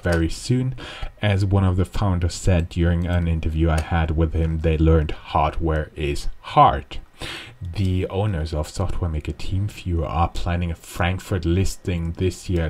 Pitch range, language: 80-100 Hz, English